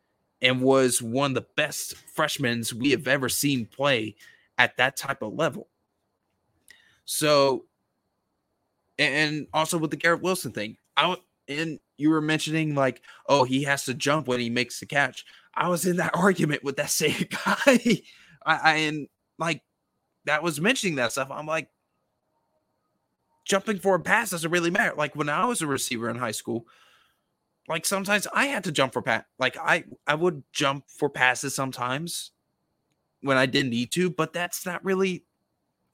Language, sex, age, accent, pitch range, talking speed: English, male, 20-39, American, 140-185 Hz, 170 wpm